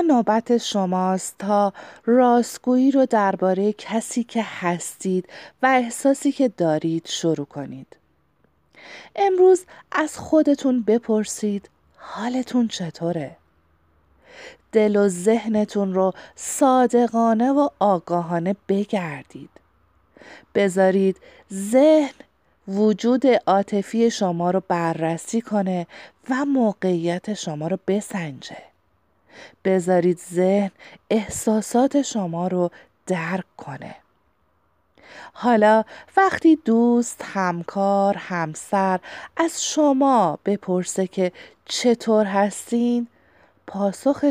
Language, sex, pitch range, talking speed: Persian, female, 185-245 Hz, 85 wpm